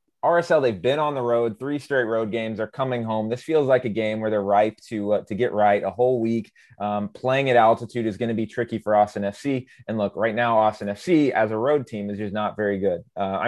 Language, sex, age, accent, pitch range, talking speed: English, male, 20-39, American, 100-125 Hz, 250 wpm